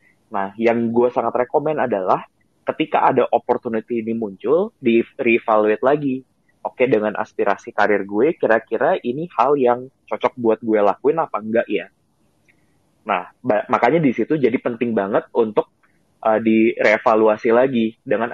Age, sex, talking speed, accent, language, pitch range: 20-39, male, 145 wpm, native, Indonesian, 105-125 Hz